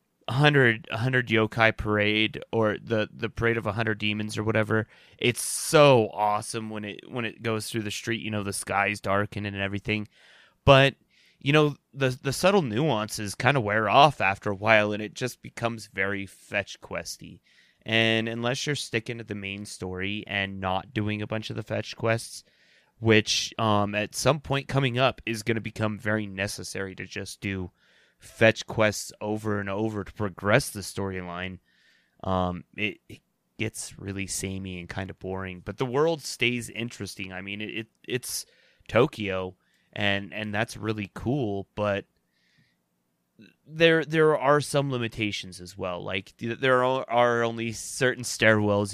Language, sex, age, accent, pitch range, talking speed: English, male, 20-39, American, 100-115 Hz, 165 wpm